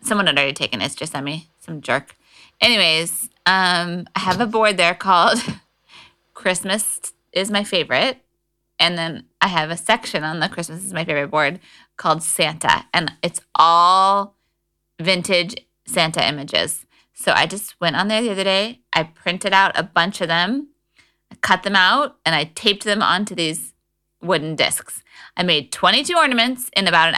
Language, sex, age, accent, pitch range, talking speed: English, female, 20-39, American, 165-225 Hz, 175 wpm